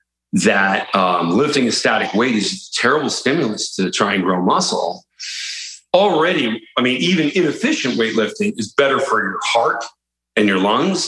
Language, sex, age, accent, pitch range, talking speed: English, male, 40-59, American, 100-125 Hz, 155 wpm